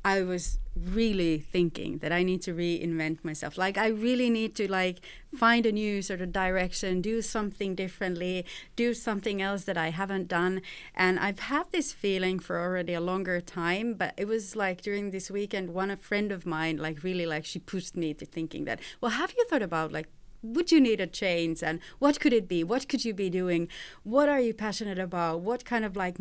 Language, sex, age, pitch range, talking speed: English, female, 30-49, 175-210 Hz, 210 wpm